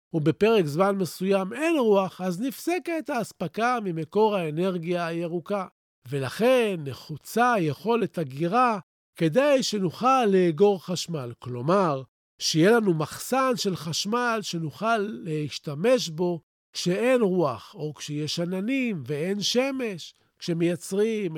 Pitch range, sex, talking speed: 160-225 Hz, male, 100 wpm